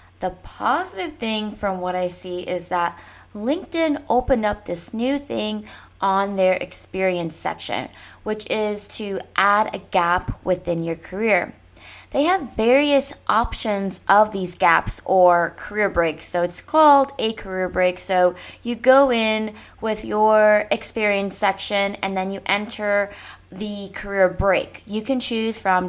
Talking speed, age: 145 wpm, 20-39